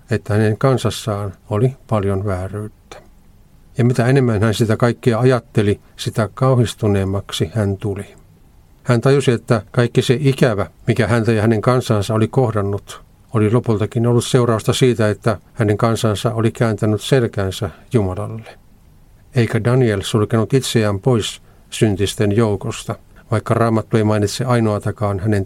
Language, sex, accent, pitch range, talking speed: Finnish, male, native, 105-125 Hz, 130 wpm